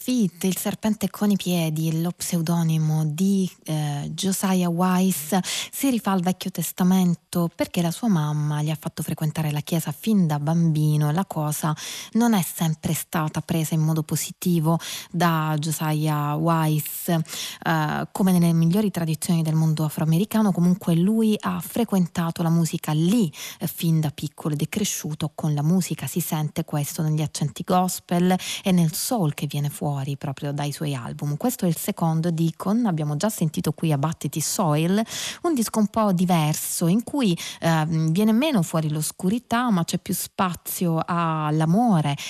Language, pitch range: Italian, 155-185 Hz